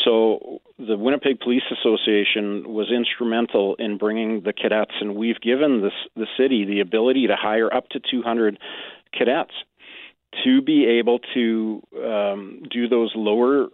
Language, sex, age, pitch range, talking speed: English, male, 40-59, 105-120 Hz, 145 wpm